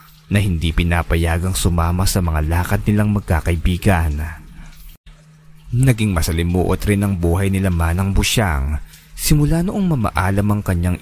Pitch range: 85-110 Hz